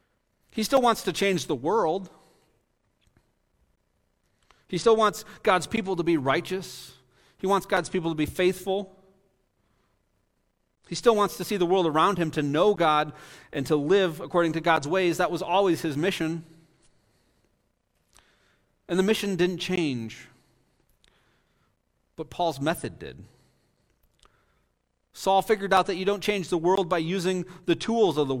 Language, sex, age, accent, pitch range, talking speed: English, male, 40-59, American, 150-190 Hz, 150 wpm